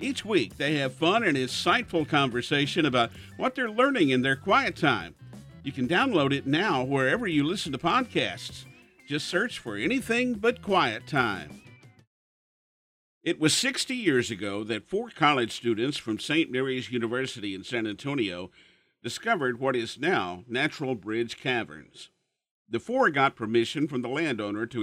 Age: 50-69